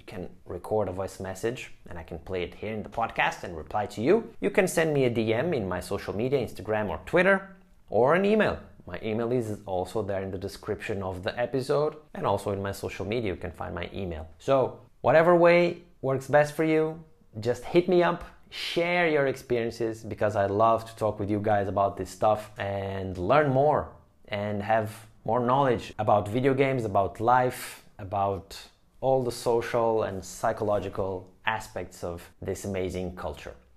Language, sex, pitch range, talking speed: English, male, 100-135 Hz, 185 wpm